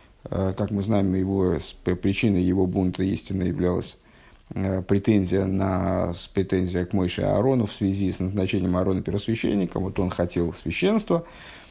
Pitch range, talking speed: 95-125 Hz, 130 wpm